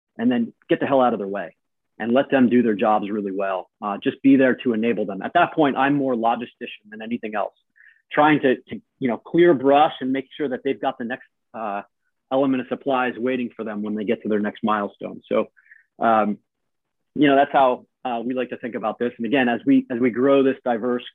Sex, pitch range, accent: male, 115-135 Hz, American